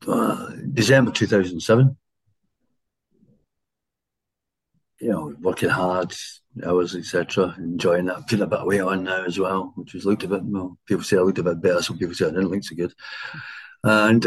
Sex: male